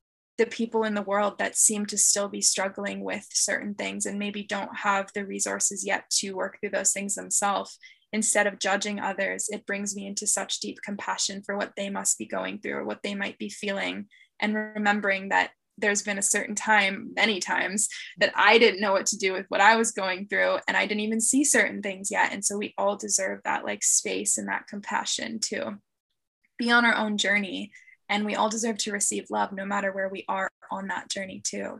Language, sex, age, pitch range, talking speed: English, female, 10-29, 195-215 Hz, 215 wpm